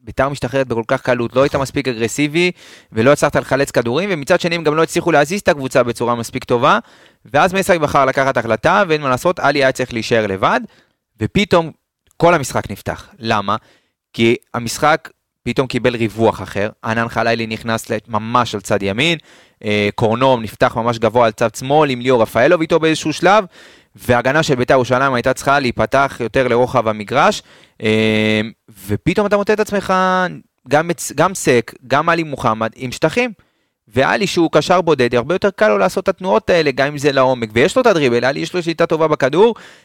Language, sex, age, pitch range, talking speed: Hebrew, male, 30-49, 115-160 Hz, 175 wpm